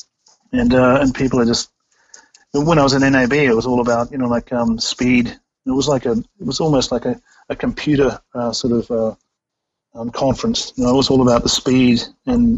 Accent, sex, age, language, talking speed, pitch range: Australian, male, 40-59, English, 220 wpm, 115-135 Hz